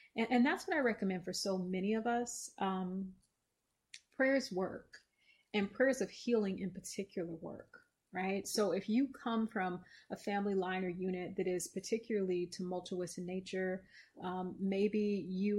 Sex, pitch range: female, 185-210 Hz